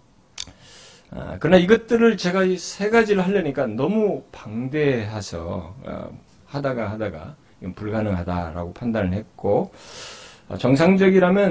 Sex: male